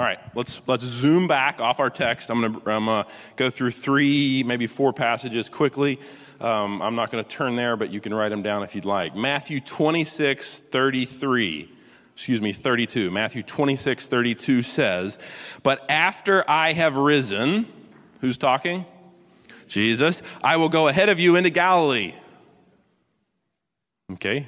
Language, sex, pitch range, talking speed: English, male, 120-165 Hz, 150 wpm